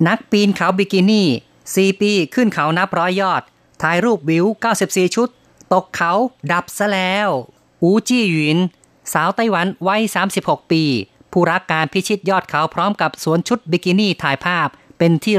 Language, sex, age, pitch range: Thai, female, 30-49, 155-190 Hz